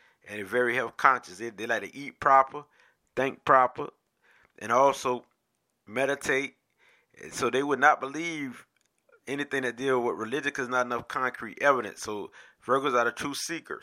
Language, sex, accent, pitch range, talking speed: English, male, American, 125-155 Hz, 170 wpm